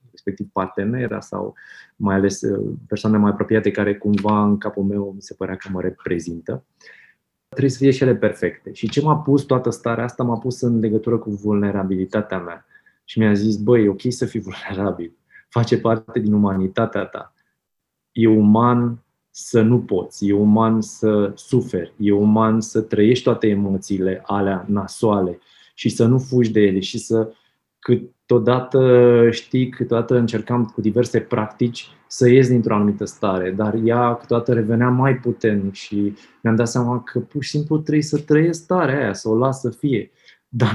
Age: 20-39